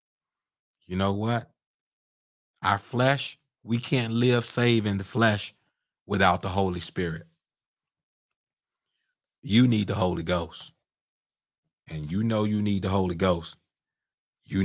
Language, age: English, 30-49